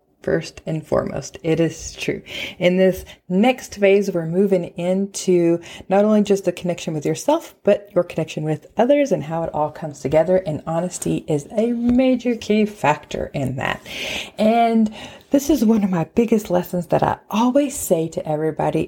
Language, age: English, 30-49